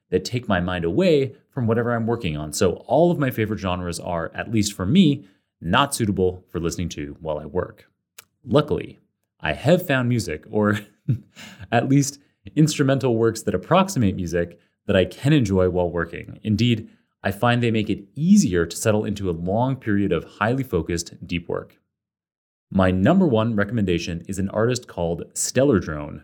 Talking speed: 175 wpm